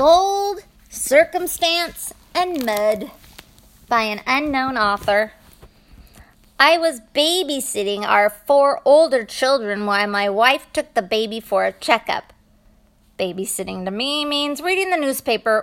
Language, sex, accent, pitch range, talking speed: English, female, American, 210-315 Hz, 120 wpm